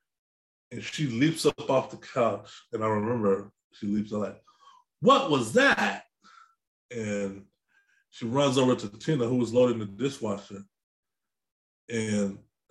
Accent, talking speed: American, 130 wpm